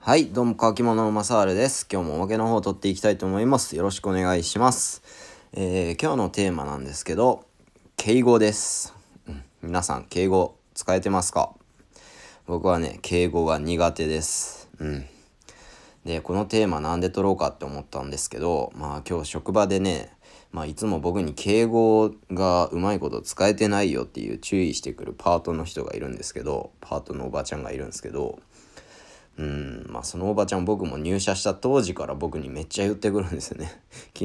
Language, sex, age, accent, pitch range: Japanese, male, 20-39, native, 80-105 Hz